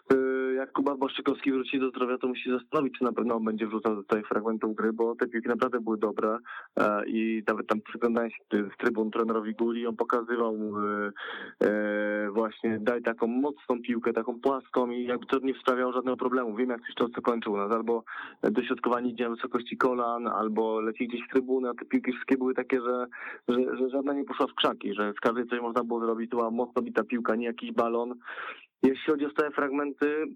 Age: 20-39